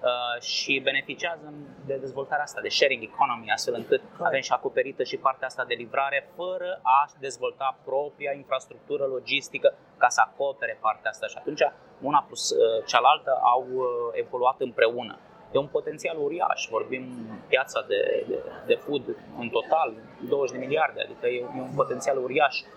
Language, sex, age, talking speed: Romanian, male, 20-39, 150 wpm